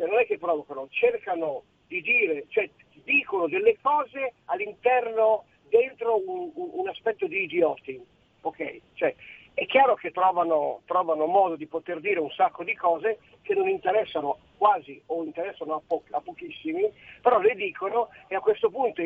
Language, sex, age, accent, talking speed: Italian, male, 50-69, native, 160 wpm